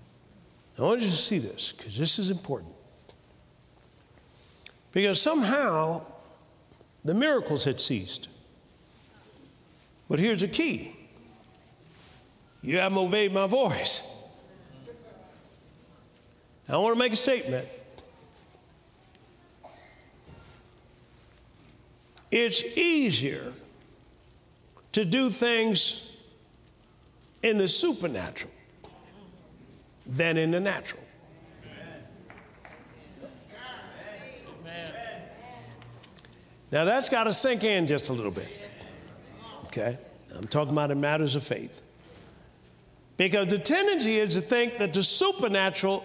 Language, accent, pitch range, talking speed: English, American, 150-225 Hz, 90 wpm